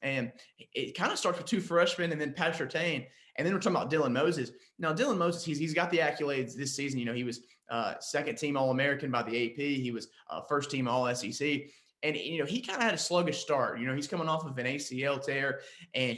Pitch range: 125-150 Hz